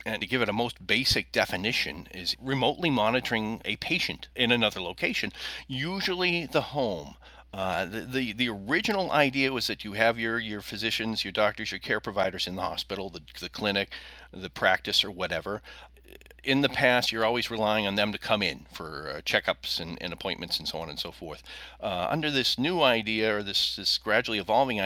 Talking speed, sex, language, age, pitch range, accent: 190 wpm, male, English, 40-59, 95-125 Hz, American